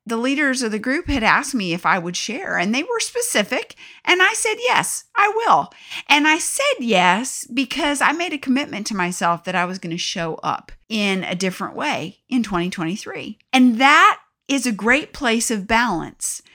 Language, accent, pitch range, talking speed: English, American, 190-260 Hz, 195 wpm